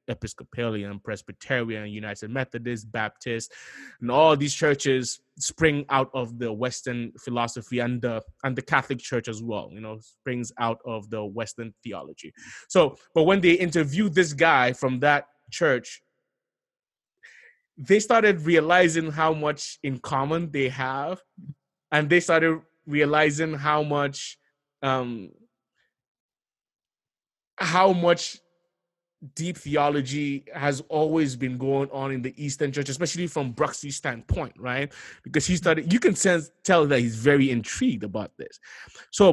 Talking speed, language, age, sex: 135 wpm, English, 20-39, male